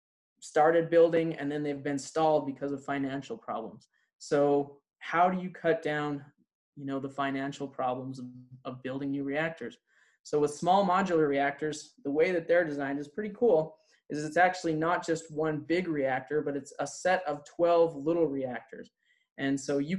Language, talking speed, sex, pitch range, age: English, 175 wpm, male, 140-160 Hz, 20-39